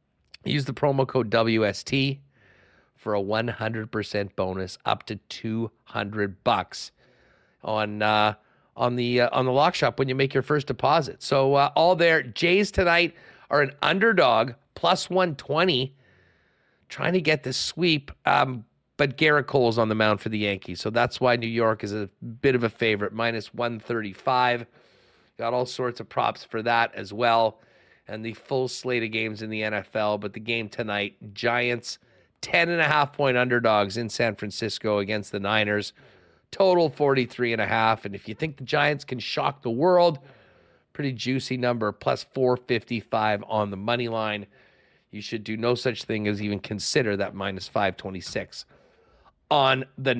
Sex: male